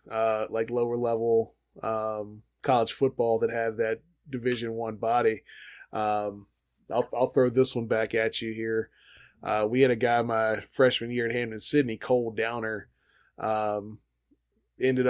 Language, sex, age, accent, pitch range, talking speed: English, male, 20-39, American, 115-135 Hz, 150 wpm